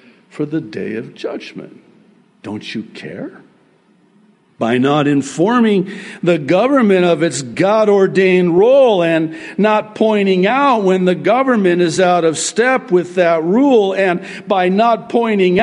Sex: male